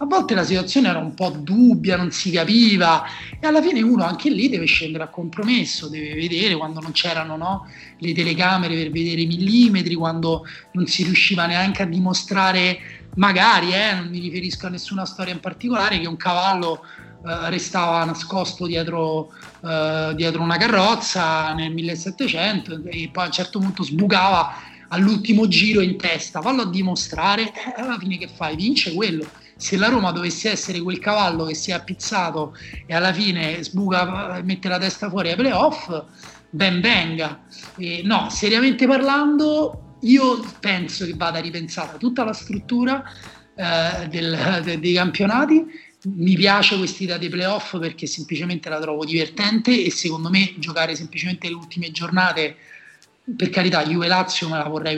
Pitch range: 165-205 Hz